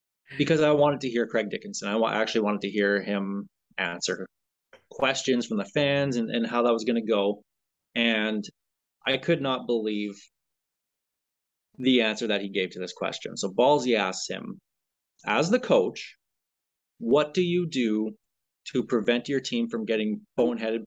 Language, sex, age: English, male, 20-39